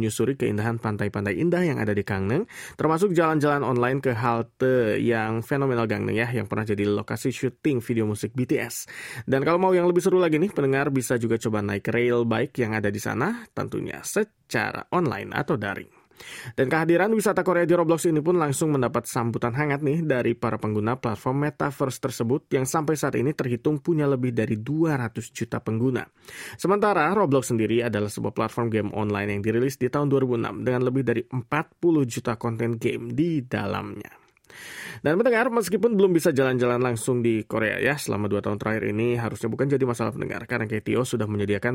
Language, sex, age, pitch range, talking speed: Malay, male, 20-39, 115-150 Hz, 180 wpm